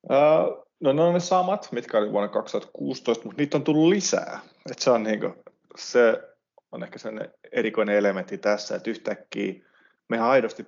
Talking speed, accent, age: 170 wpm, native, 20-39